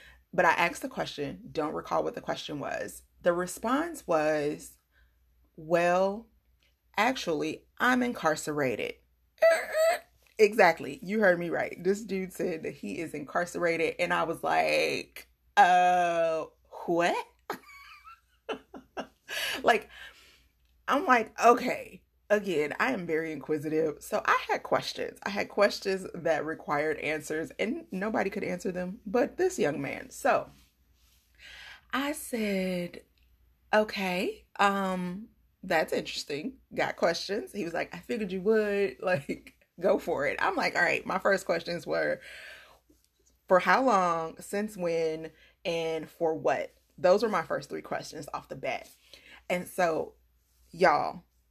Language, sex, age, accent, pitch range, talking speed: English, female, 30-49, American, 160-235 Hz, 130 wpm